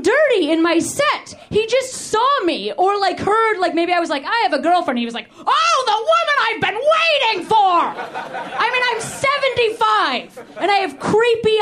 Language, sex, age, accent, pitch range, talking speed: English, female, 30-49, American, 290-420 Hz, 190 wpm